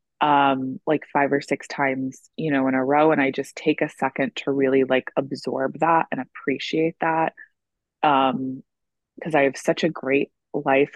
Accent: American